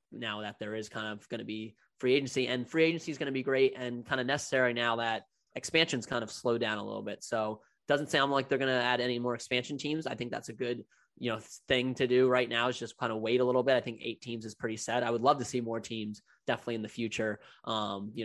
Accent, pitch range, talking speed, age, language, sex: American, 110-130 Hz, 285 wpm, 20-39, English, male